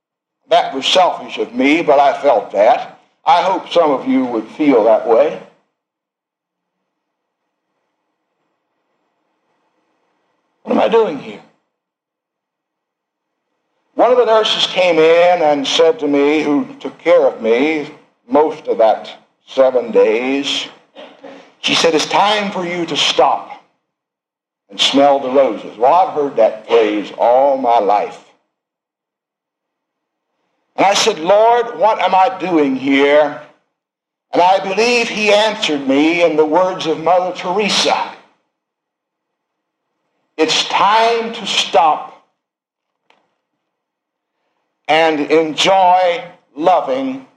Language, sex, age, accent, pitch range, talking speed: English, male, 60-79, American, 155-230 Hz, 115 wpm